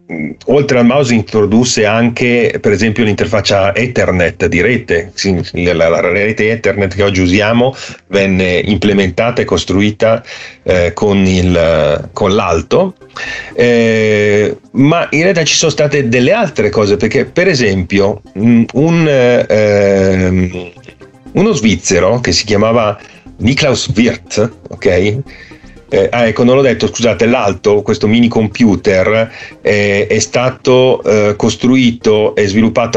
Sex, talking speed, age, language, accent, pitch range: male, 120 wpm, 40-59, Italian, native, 100-125 Hz